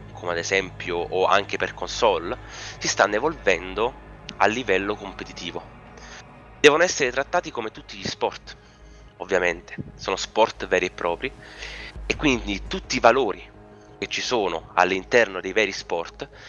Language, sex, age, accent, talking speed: Italian, male, 30-49, native, 140 wpm